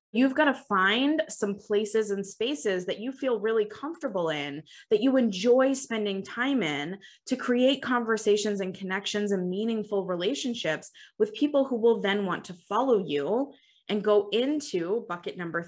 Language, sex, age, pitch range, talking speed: English, female, 20-39, 185-235 Hz, 160 wpm